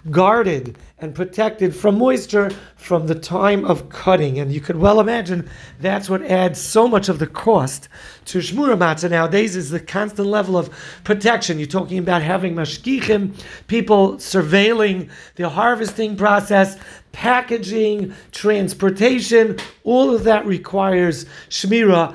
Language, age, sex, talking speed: English, 50-69, male, 135 wpm